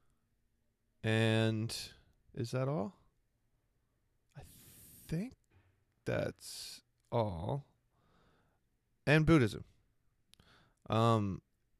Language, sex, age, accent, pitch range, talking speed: English, male, 20-39, American, 105-125 Hz, 55 wpm